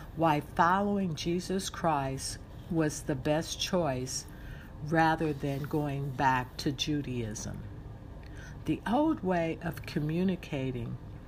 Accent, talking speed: American, 100 wpm